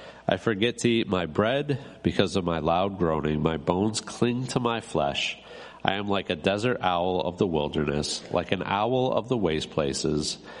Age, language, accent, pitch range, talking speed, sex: 50-69, English, American, 75-110 Hz, 185 wpm, male